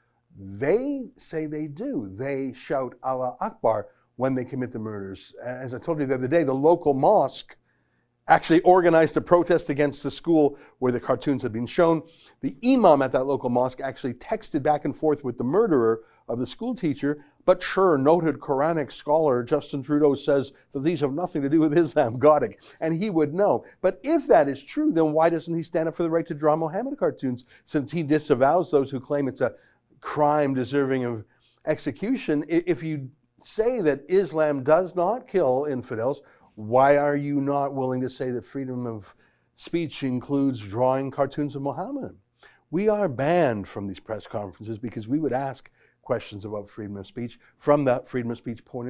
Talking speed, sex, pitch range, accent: 185 wpm, male, 125-160 Hz, American